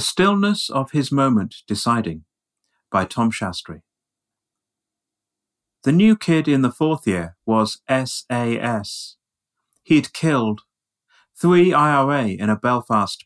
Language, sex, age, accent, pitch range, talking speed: English, male, 40-59, British, 105-140 Hz, 115 wpm